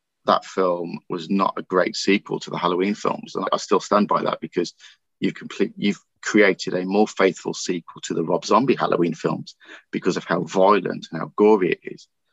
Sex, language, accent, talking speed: male, English, British, 200 wpm